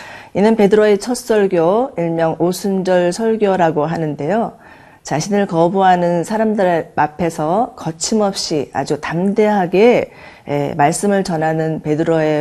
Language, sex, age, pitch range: Korean, female, 40-59, 155-190 Hz